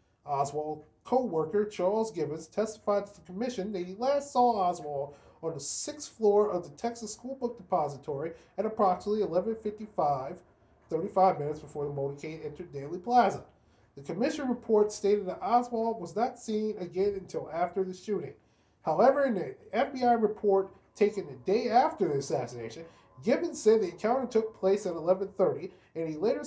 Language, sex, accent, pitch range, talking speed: English, male, American, 160-225 Hz, 160 wpm